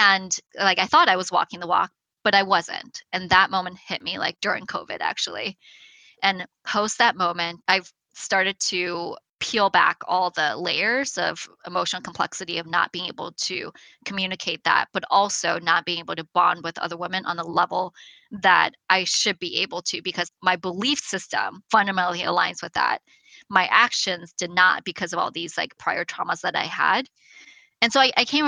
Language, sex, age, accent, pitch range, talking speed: English, female, 20-39, American, 175-205 Hz, 190 wpm